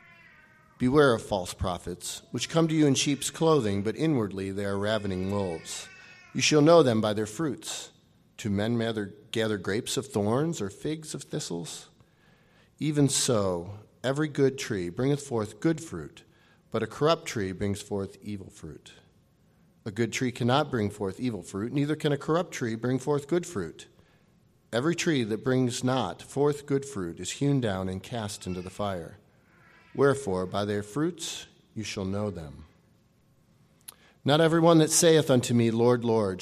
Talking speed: 165 wpm